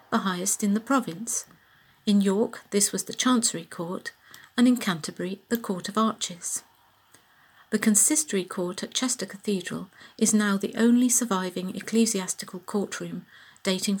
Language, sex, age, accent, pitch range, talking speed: English, female, 50-69, British, 185-225 Hz, 140 wpm